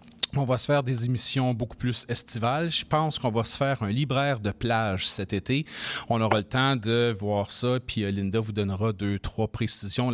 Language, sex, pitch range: French, male, 105-130 Hz